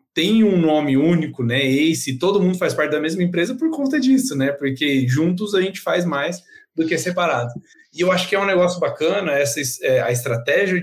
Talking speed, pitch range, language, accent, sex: 210 wpm, 140-190 Hz, Portuguese, Brazilian, male